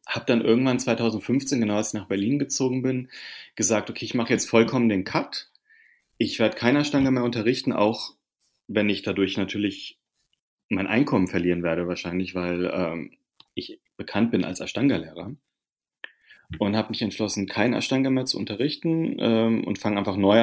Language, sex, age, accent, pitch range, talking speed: German, male, 30-49, German, 100-130 Hz, 165 wpm